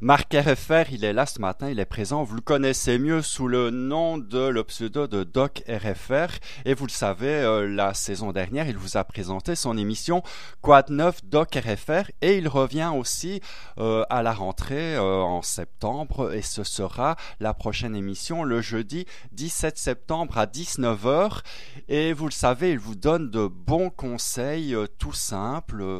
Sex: male